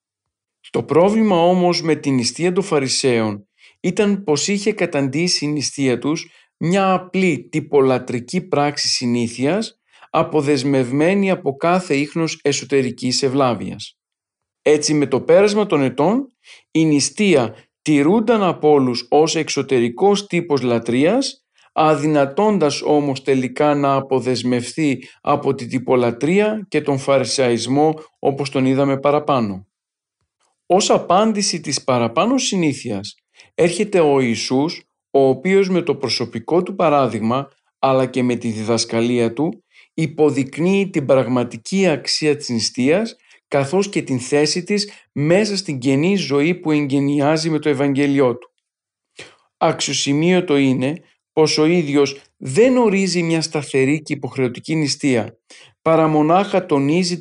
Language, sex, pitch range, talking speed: Greek, male, 130-175 Hz, 120 wpm